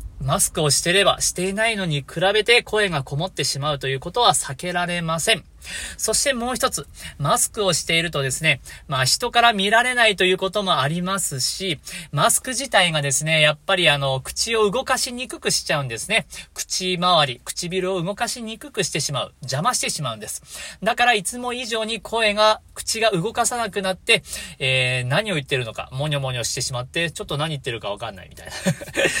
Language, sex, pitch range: Japanese, male, 140-225 Hz